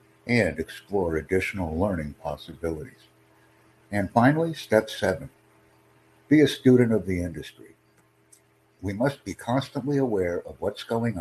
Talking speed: 125 wpm